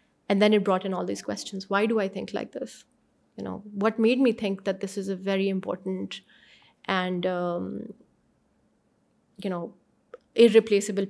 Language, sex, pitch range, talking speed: Urdu, female, 190-225 Hz, 170 wpm